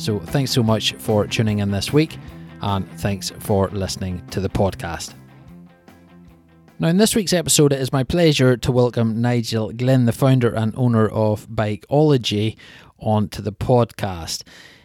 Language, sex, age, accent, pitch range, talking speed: English, male, 20-39, British, 110-135 Hz, 155 wpm